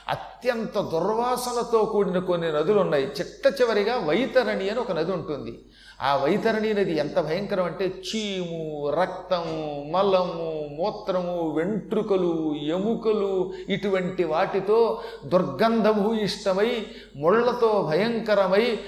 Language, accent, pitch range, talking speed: Telugu, native, 160-215 Hz, 100 wpm